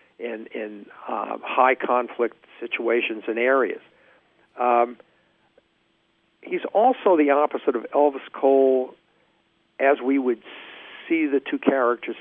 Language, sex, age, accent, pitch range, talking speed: English, male, 50-69, American, 120-145 Hz, 110 wpm